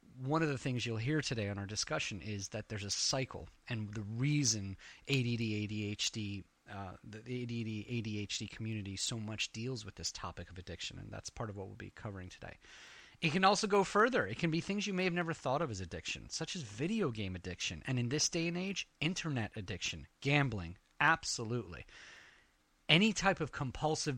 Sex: male